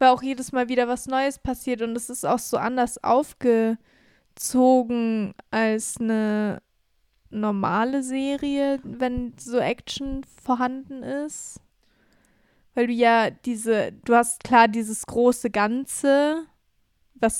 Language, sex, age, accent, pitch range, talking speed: German, female, 20-39, German, 220-250 Hz, 120 wpm